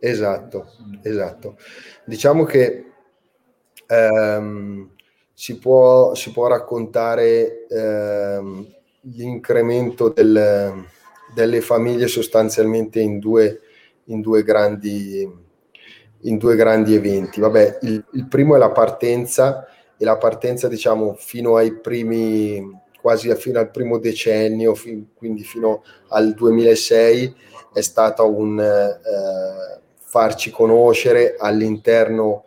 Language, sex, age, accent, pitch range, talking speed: Italian, male, 20-39, native, 105-120 Hz, 105 wpm